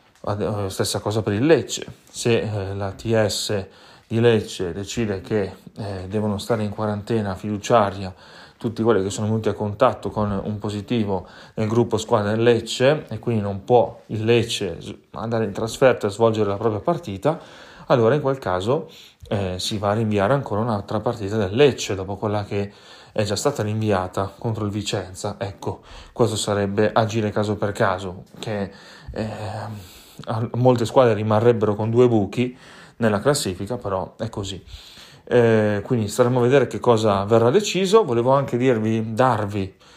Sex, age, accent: male, 30-49, native